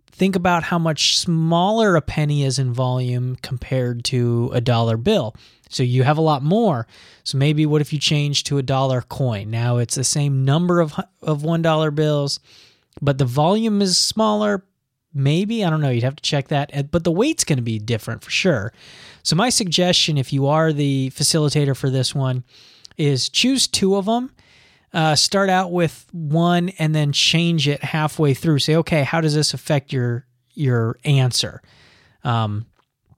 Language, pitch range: English, 125-170 Hz